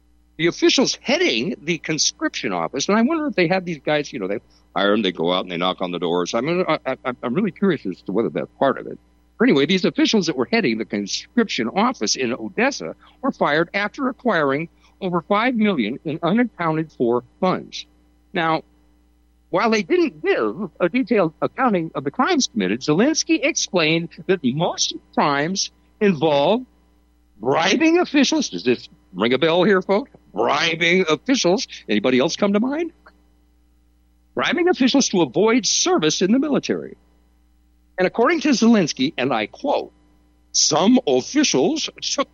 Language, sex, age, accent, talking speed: English, male, 60-79, American, 165 wpm